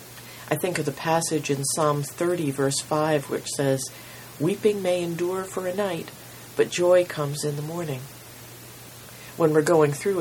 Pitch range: 130-155 Hz